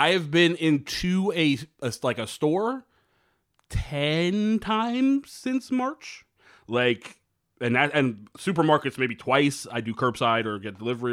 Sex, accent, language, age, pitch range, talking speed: male, American, English, 30-49, 110-140 Hz, 140 wpm